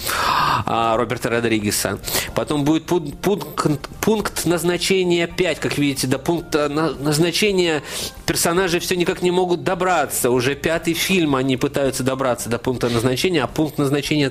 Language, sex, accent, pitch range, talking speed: Russian, male, native, 120-160 Hz, 130 wpm